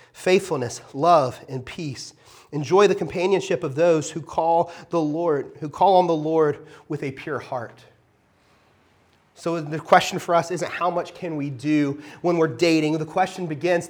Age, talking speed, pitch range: 30-49, 170 wpm, 170-250 Hz